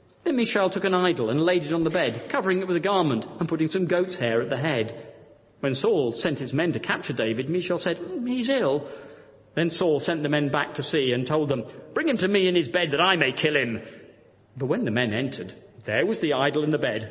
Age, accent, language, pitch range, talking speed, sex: 40-59, British, English, 125-190 Hz, 255 wpm, male